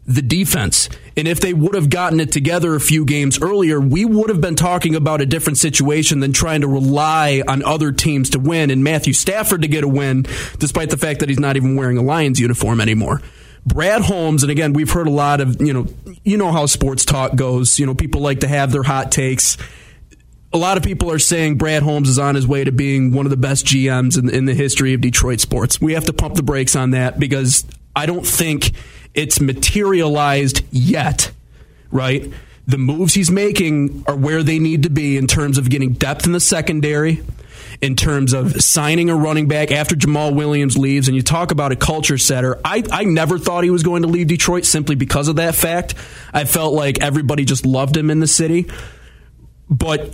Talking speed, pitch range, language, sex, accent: 215 wpm, 135-160 Hz, English, male, American